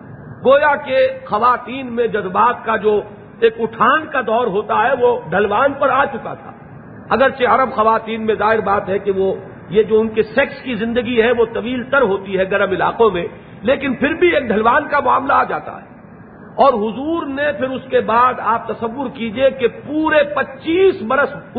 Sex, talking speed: male, 185 wpm